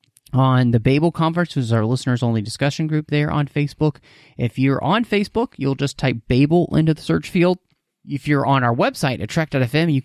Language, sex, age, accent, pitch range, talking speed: English, male, 30-49, American, 115-150 Hz, 190 wpm